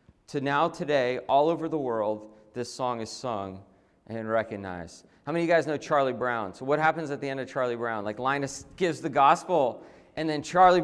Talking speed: 215 wpm